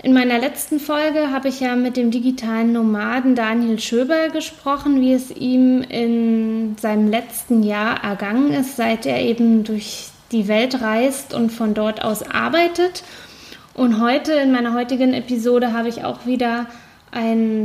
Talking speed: 155 wpm